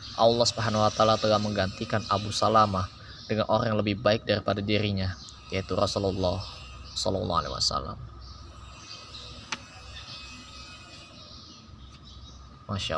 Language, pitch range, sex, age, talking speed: Indonesian, 90-110 Hz, male, 20-39, 95 wpm